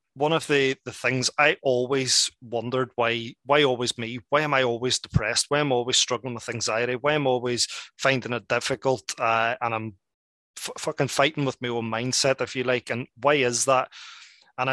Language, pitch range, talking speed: English, 120-135 Hz, 200 wpm